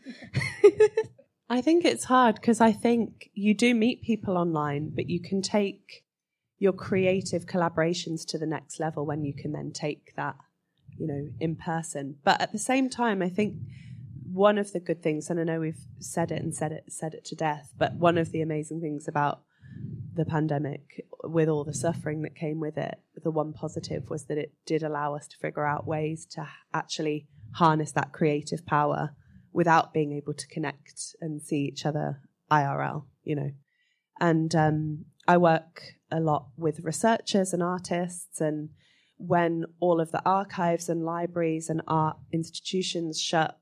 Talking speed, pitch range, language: 175 wpm, 155-185 Hz, English